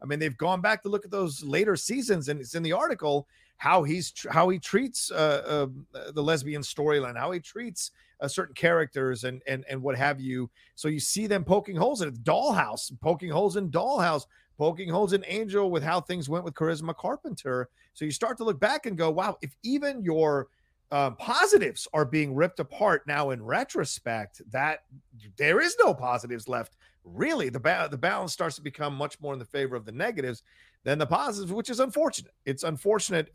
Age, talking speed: 40-59, 205 wpm